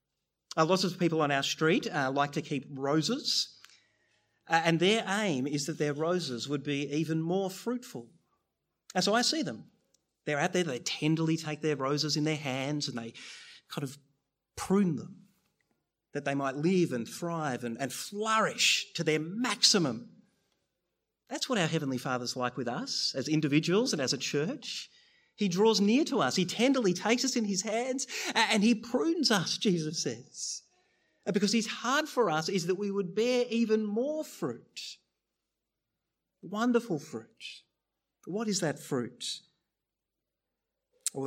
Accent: Australian